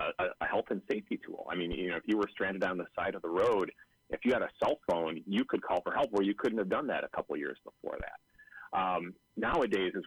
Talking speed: 260 wpm